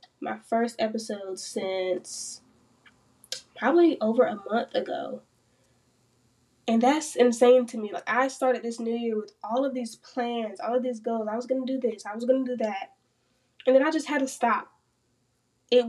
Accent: American